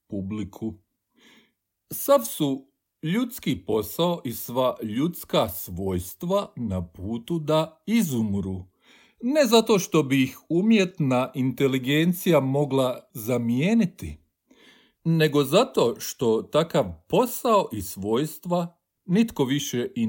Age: 50-69